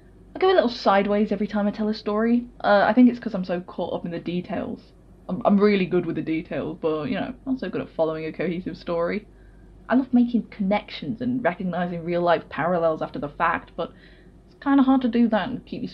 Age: 10-29